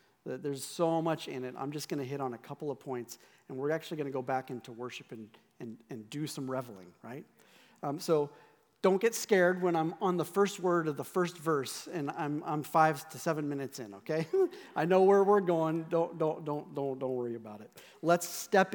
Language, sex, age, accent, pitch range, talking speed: English, male, 40-59, American, 140-180 Hz, 220 wpm